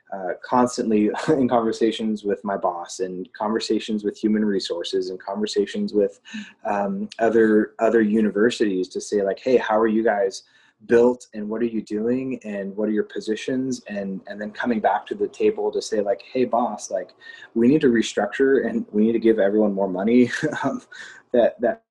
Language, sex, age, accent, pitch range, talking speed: English, male, 20-39, American, 105-130 Hz, 180 wpm